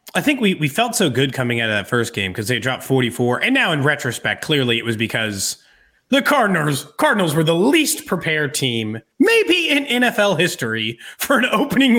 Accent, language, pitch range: American, English, 130-190 Hz